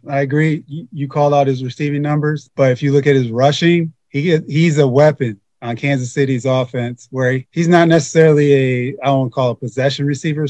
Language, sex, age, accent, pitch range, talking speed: English, male, 30-49, American, 130-155 Hz, 205 wpm